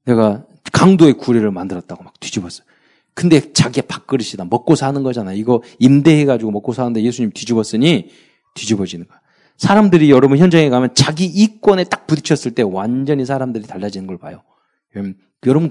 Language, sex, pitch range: Korean, male, 120-190 Hz